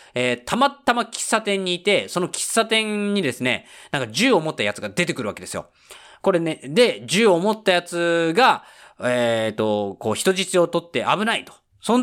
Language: Japanese